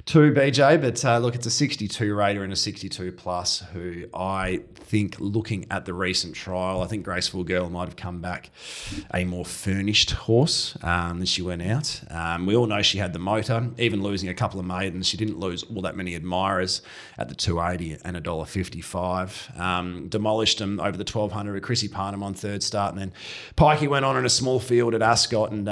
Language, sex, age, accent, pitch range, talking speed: English, male, 30-49, Australian, 90-115 Hz, 210 wpm